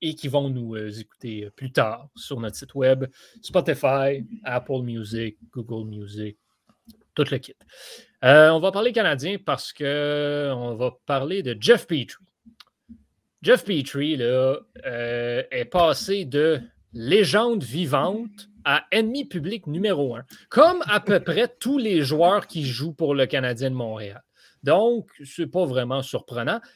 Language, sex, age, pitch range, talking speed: French, male, 30-49, 125-195 Hz, 145 wpm